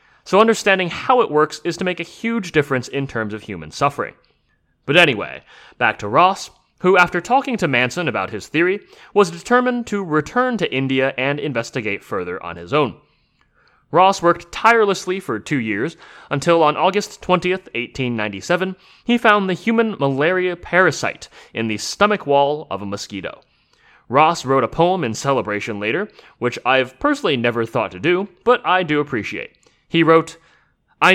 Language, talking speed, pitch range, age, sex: English, 165 wpm, 130-190 Hz, 30-49, male